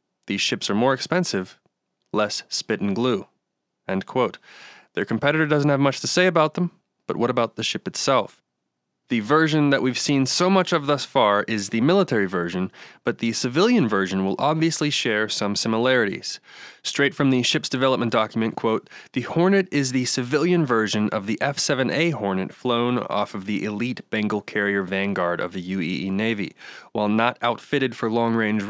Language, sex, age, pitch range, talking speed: English, male, 20-39, 105-145 Hz, 175 wpm